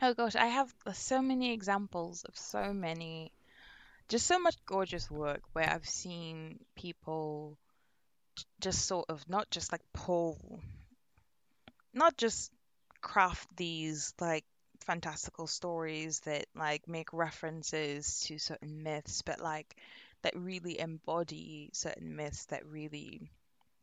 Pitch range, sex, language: 145-175 Hz, female, English